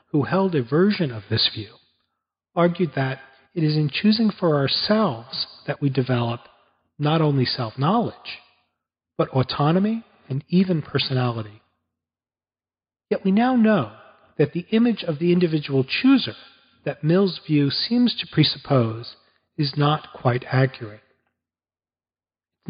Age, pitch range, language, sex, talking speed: 40-59, 115-175 Hz, English, male, 125 wpm